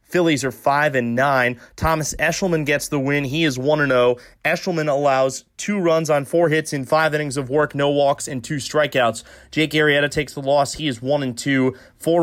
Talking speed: 200 wpm